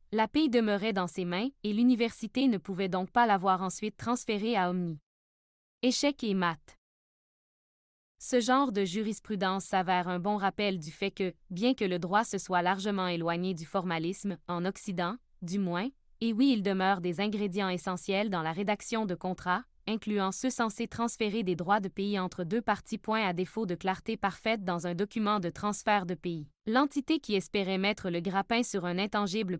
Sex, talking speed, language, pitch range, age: female, 180 wpm, French, 185-220 Hz, 20-39